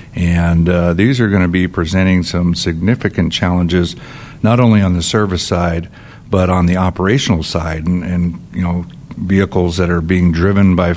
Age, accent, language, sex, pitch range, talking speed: 60-79, American, English, male, 85-100 Hz, 175 wpm